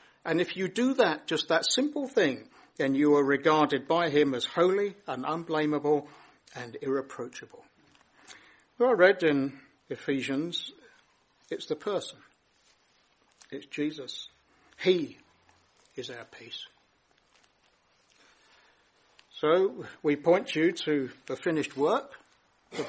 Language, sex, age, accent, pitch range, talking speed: English, male, 60-79, British, 150-225 Hz, 115 wpm